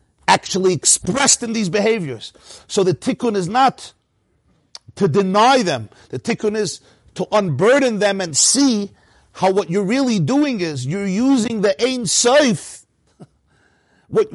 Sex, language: male, English